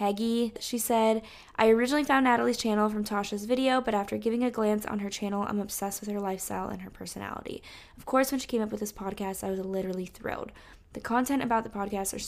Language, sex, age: English, female, 10-29